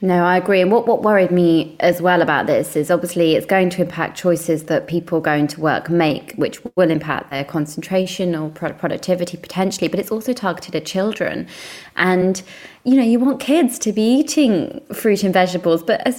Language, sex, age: English, female, 20-39